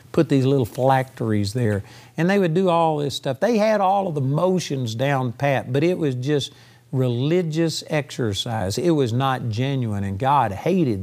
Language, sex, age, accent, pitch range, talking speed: English, male, 50-69, American, 120-175 Hz, 180 wpm